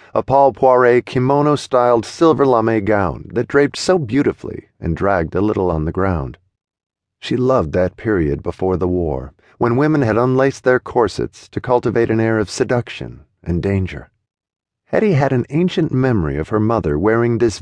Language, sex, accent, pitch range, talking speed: English, male, American, 95-125 Hz, 165 wpm